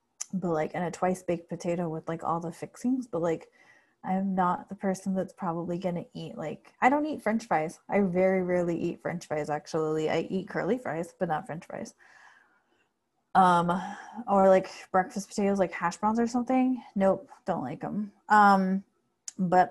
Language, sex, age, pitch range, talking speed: English, female, 20-39, 170-205 Hz, 180 wpm